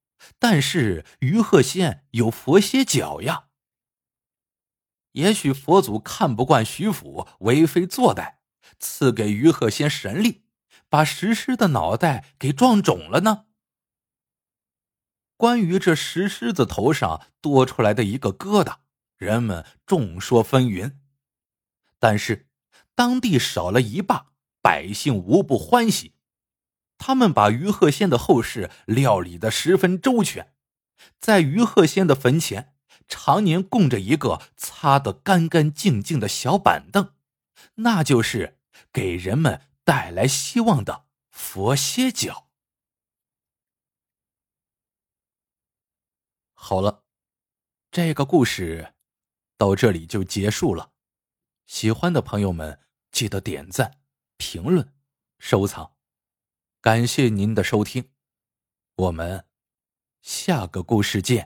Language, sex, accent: Chinese, male, native